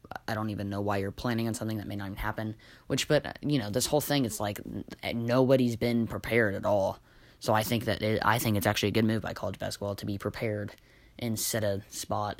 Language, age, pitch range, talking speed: English, 10-29, 105-120 Hz, 235 wpm